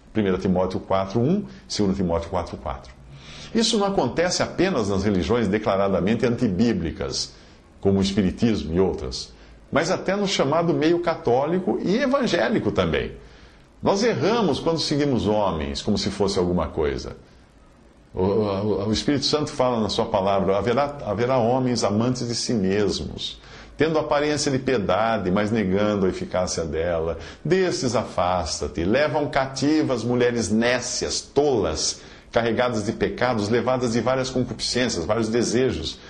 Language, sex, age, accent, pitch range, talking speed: English, male, 50-69, Brazilian, 95-135 Hz, 130 wpm